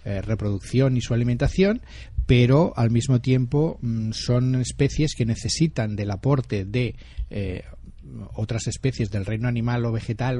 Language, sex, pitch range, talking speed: Spanish, male, 105-130 Hz, 145 wpm